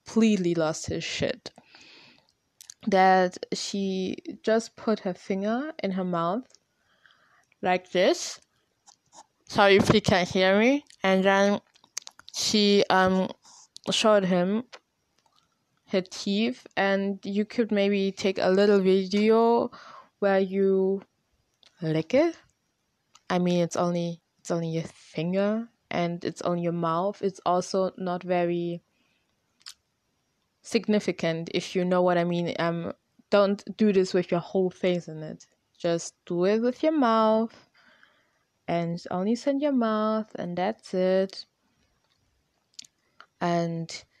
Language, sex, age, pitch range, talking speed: German, female, 20-39, 180-215 Hz, 120 wpm